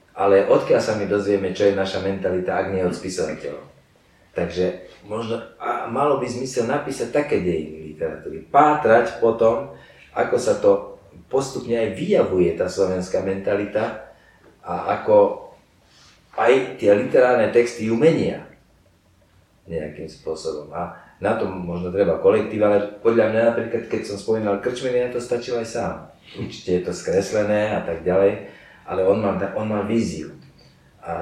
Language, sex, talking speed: Slovak, male, 140 wpm